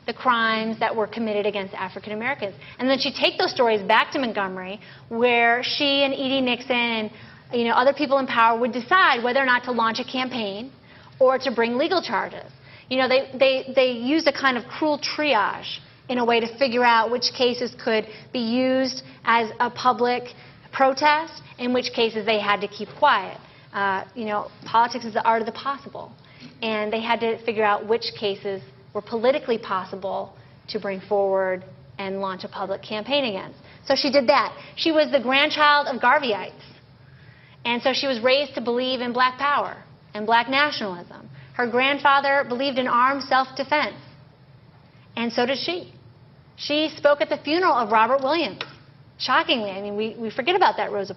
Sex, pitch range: female, 210-270 Hz